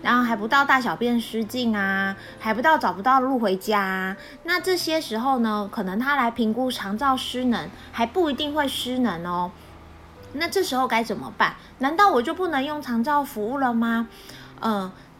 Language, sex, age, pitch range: Chinese, female, 20-39, 215-285 Hz